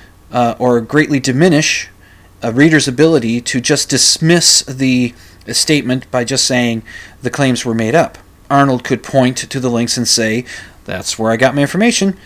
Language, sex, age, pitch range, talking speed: English, male, 30-49, 115-170 Hz, 165 wpm